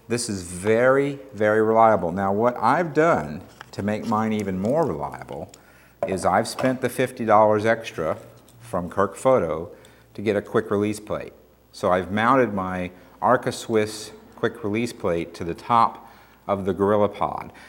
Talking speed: 145 wpm